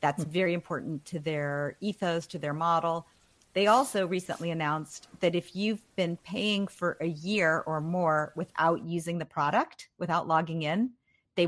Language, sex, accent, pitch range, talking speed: English, female, American, 160-200 Hz, 160 wpm